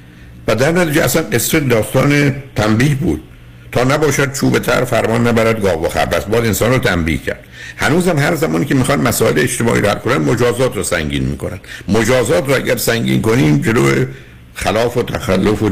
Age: 60-79